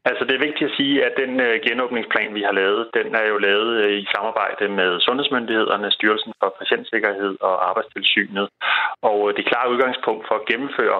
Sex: male